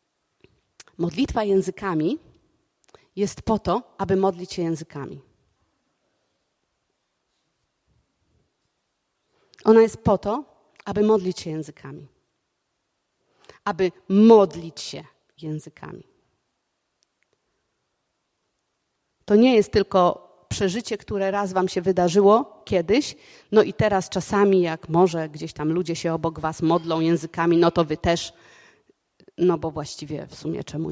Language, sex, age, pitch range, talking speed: Polish, female, 30-49, 170-215 Hz, 110 wpm